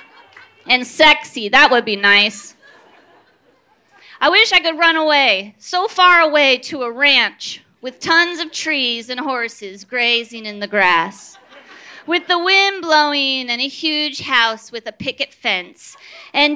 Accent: American